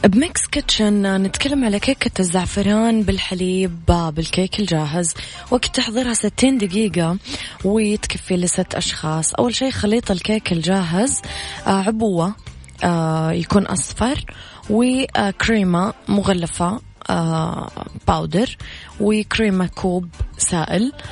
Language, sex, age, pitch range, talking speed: Arabic, female, 20-39, 175-215 Hz, 85 wpm